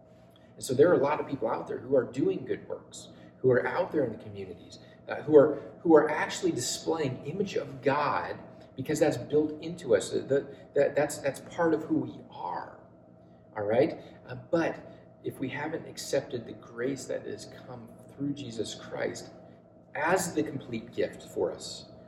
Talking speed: 190 wpm